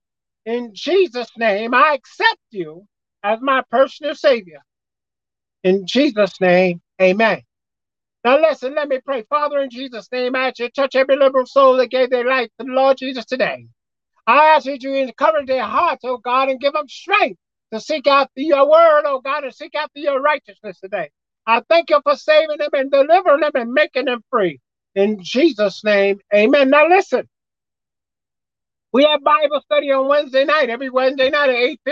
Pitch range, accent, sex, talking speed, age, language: 205-275 Hz, American, male, 180 wpm, 50-69, English